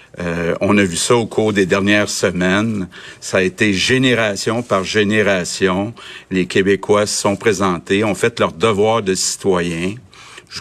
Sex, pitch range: male, 95-115 Hz